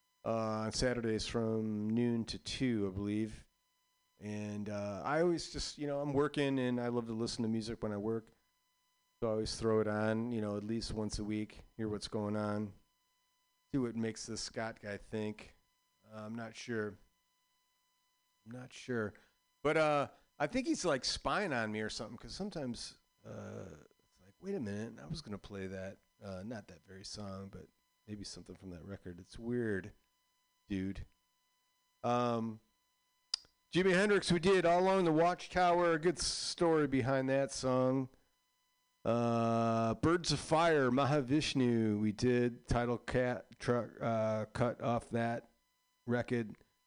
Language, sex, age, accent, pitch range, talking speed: English, male, 40-59, American, 110-175 Hz, 165 wpm